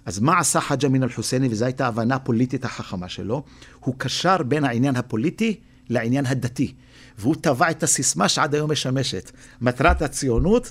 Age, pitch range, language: 50-69, 125-160 Hz, Hebrew